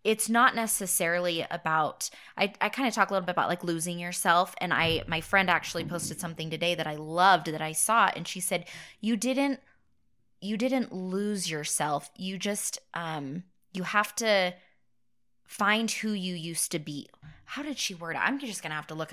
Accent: American